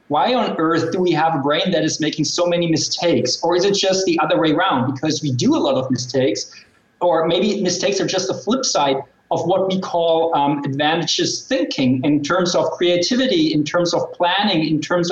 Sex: male